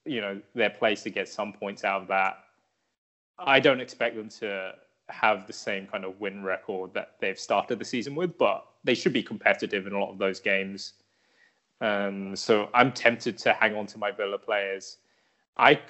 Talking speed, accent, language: 195 wpm, British, English